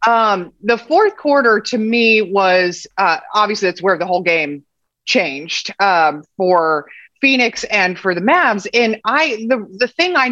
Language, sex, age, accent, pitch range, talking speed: English, female, 30-49, American, 190-245 Hz, 165 wpm